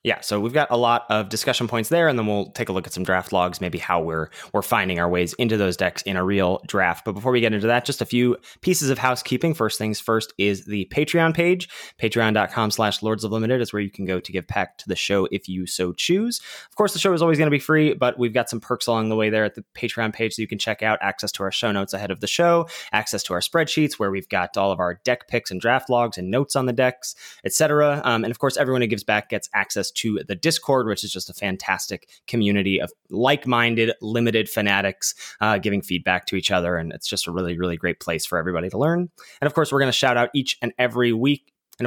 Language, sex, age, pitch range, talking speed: English, male, 20-39, 100-135 Hz, 265 wpm